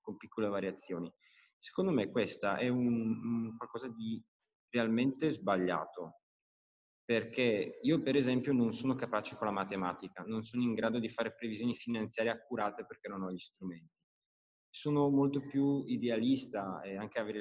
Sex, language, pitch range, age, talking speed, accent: male, Italian, 105-130 Hz, 20-39, 150 wpm, native